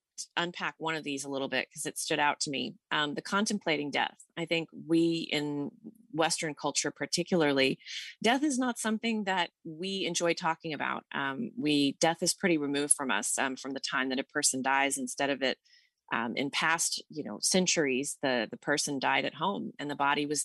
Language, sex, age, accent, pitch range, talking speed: English, female, 30-49, American, 140-165 Hz, 200 wpm